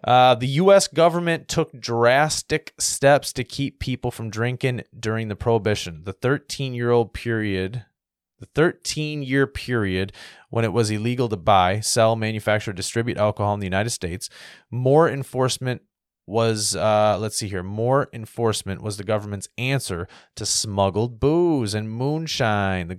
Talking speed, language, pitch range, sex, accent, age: 140 wpm, English, 105-130 Hz, male, American, 30-49